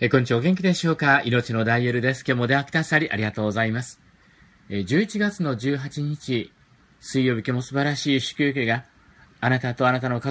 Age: 50-69